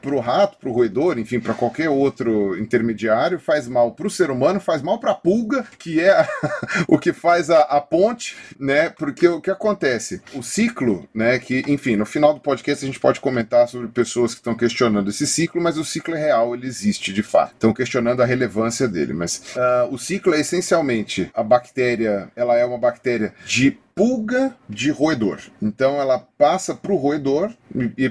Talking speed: 195 wpm